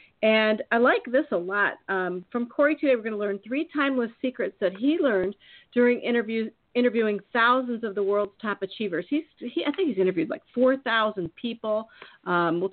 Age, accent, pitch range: 40-59, American, 175-245 Hz